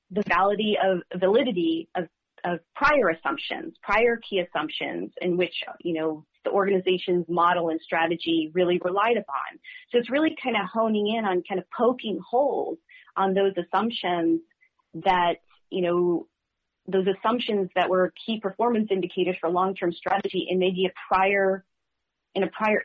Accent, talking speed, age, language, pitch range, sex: American, 150 wpm, 30-49, English, 175-215 Hz, female